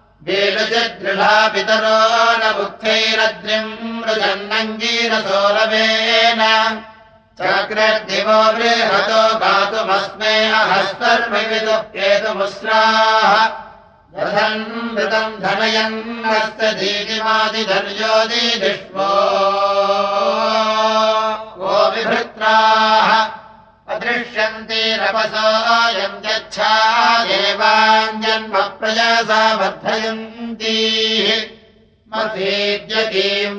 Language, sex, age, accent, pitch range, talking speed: Russian, male, 60-79, Indian, 205-220 Hz, 35 wpm